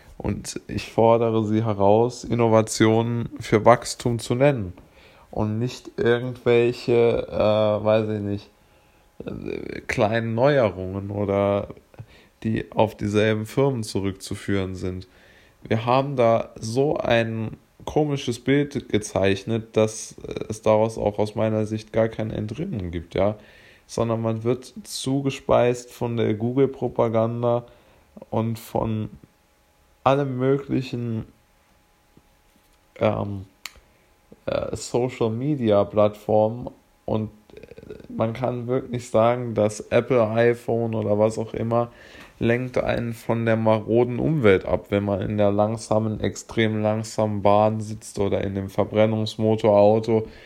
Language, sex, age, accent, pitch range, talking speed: German, male, 20-39, German, 105-120 Hz, 115 wpm